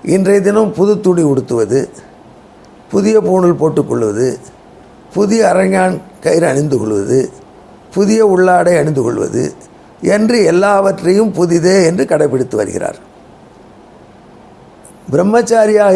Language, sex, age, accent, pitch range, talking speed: Tamil, male, 50-69, native, 165-205 Hz, 85 wpm